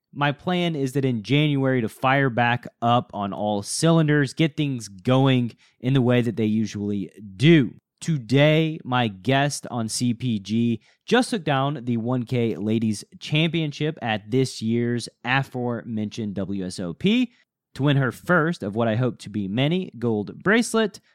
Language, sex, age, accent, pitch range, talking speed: English, male, 30-49, American, 120-165 Hz, 150 wpm